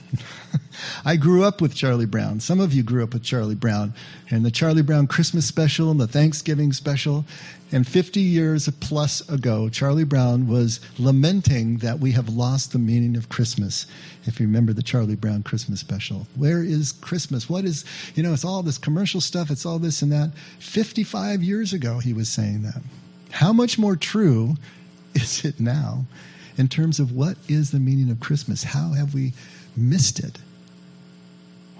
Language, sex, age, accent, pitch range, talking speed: English, male, 50-69, American, 115-150 Hz, 175 wpm